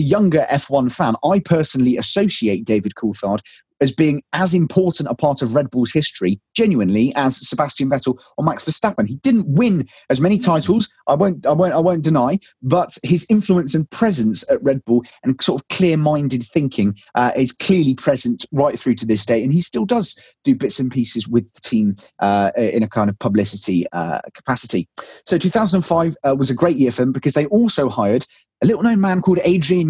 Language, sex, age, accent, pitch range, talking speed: English, male, 30-49, British, 125-180 Hz, 190 wpm